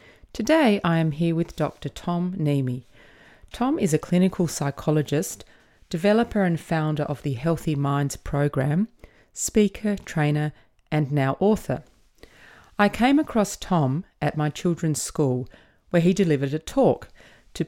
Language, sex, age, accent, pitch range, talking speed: English, female, 30-49, Australian, 140-195 Hz, 135 wpm